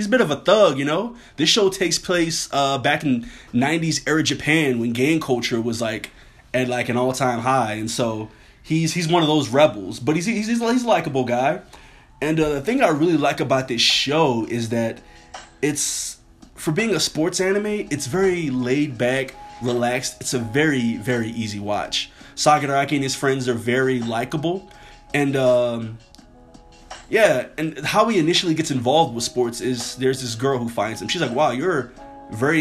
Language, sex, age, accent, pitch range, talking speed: English, male, 20-39, American, 120-155 Hz, 190 wpm